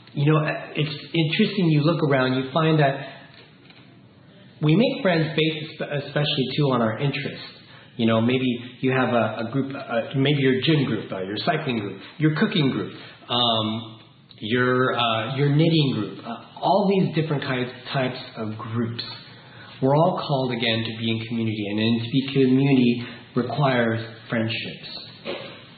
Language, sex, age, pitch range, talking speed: English, male, 40-59, 120-155 Hz, 155 wpm